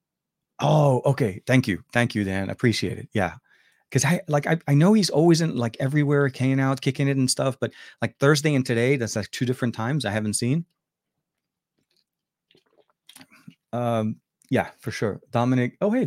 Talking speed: 175 wpm